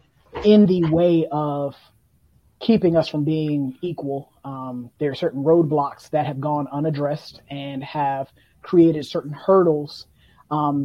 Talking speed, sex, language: 135 wpm, male, English